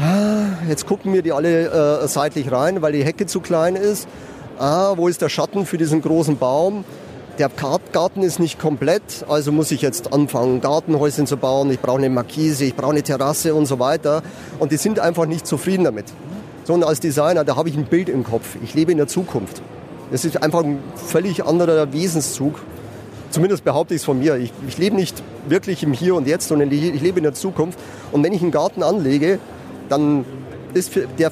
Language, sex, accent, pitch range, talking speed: German, male, German, 140-170 Hz, 205 wpm